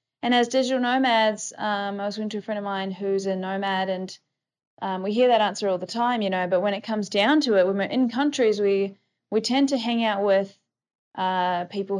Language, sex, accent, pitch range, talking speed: English, female, Australian, 185-220 Hz, 235 wpm